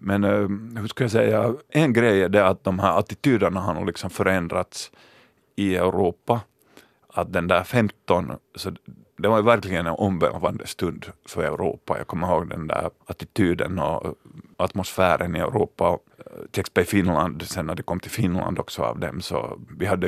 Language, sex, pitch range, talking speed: Swedish, male, 90-100 Hz, 170 wpm